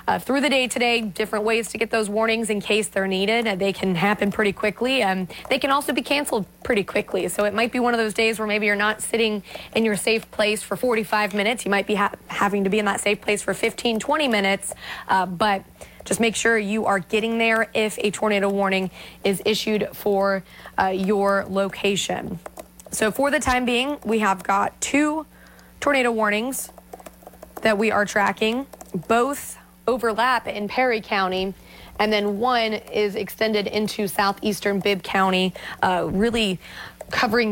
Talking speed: 185 wpm